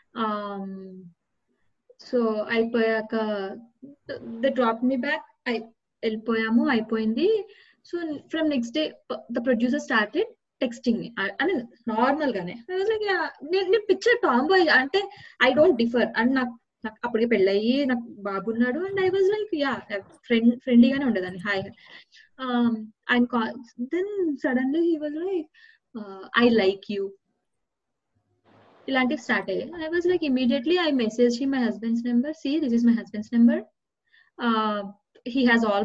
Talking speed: 145 wpm